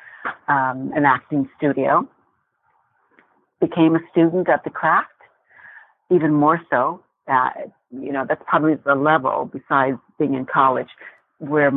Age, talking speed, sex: 60-79, 125 wpm, female